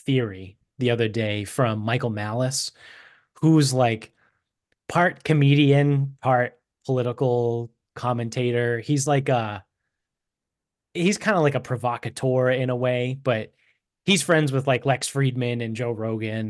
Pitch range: 110-135 Hz